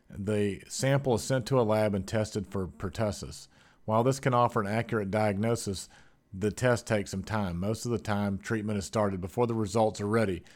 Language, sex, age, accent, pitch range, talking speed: English, male, 40-59, American, 100-120 Hz, 200 wpm